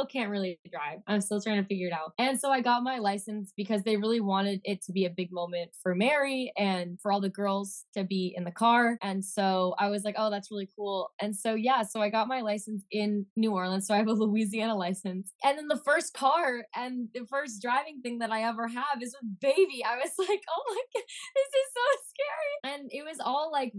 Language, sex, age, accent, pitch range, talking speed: English, female, 10-29, American, 200-255 Hz, 240 wpm